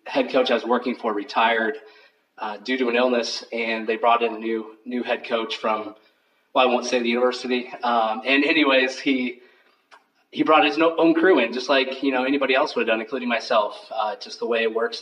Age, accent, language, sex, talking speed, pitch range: 30-49, American, English, male, 220 wpm, 115-135 Hz